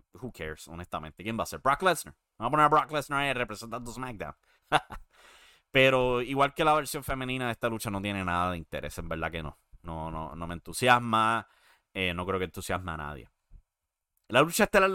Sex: male